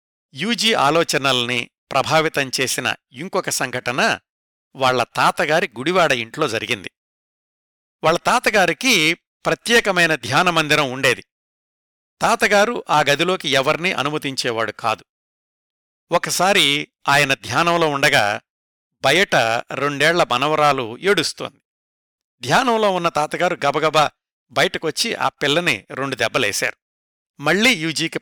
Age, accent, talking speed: 60-79, native, 85 wpm